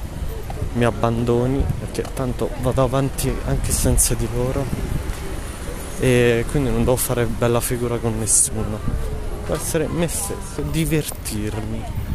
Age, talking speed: 20-39, 120 wpm